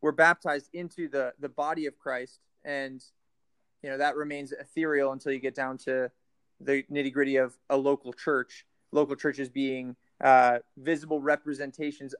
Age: 20-39